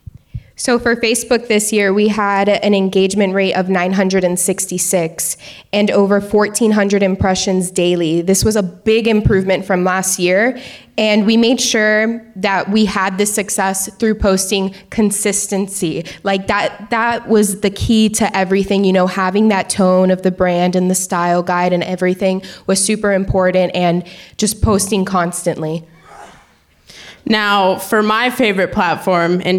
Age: 20-39